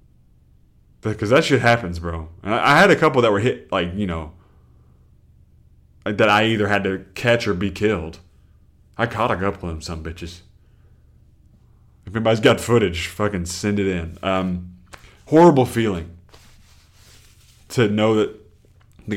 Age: 20-39